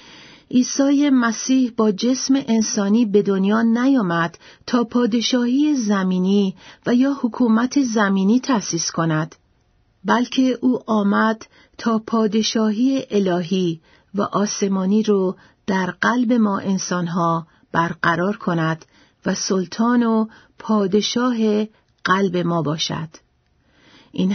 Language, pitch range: Persian, 185-235 Hz